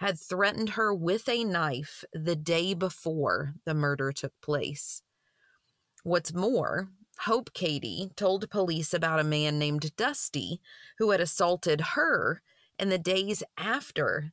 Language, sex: English, female